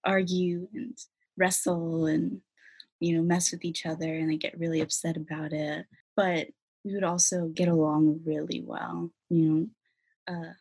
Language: English